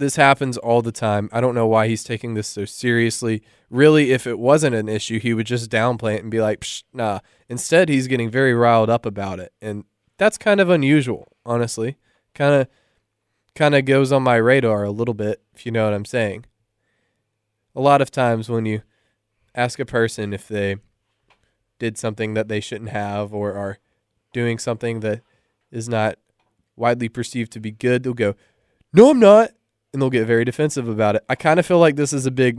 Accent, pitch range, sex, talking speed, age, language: American, 105-125 Hz, male, 200 wpm, 20-39, English